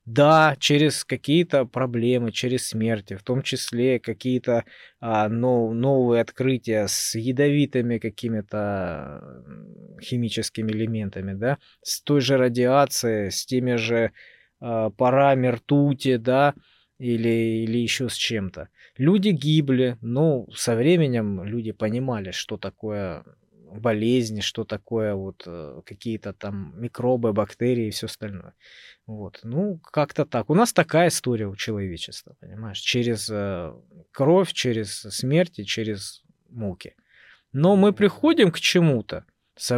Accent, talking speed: native, 120 wpm